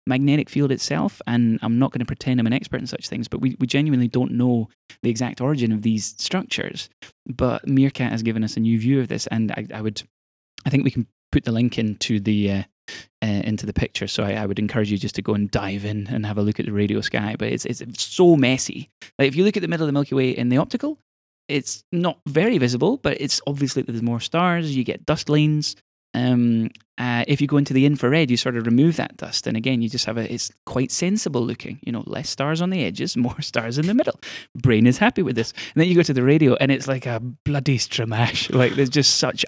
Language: English